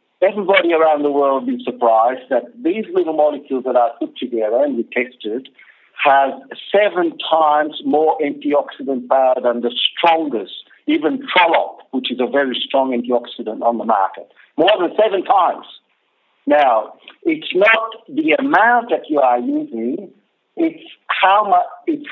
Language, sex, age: English, male, 60-79